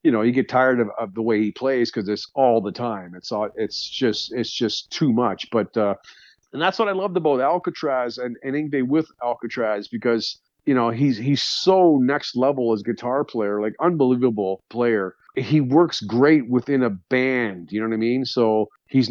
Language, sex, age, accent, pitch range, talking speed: English, male, 40-59, American, 115-150 Hz, 200 wpm